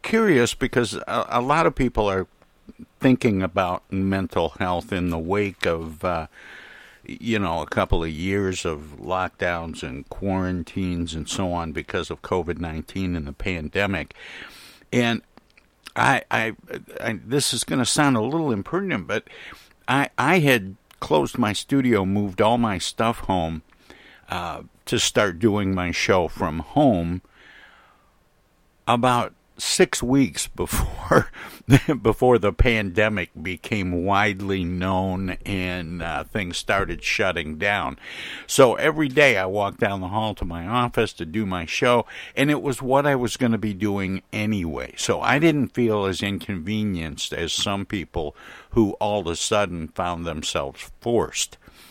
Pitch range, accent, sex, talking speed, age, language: 90-115 Hz, American, male, 145 wpm, 60-79, English